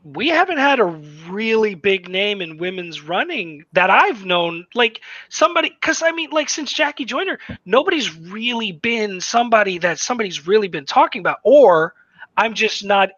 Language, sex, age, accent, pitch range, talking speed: English, male, 30-49, American, 175-240 Hz, 165 wpm